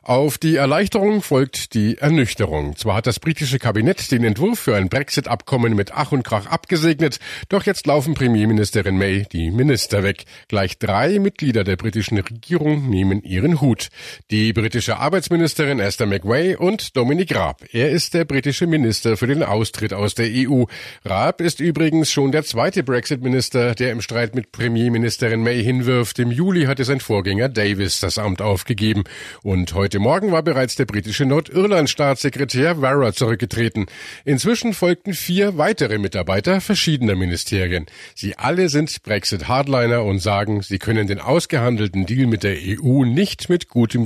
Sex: male